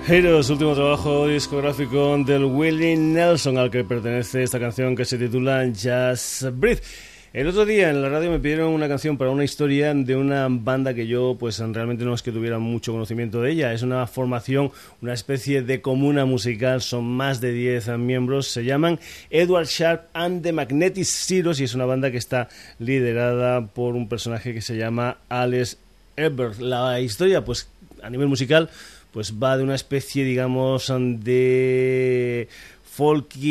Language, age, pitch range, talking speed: Spanish, 30-49, 120-140 Hz, 170 wpm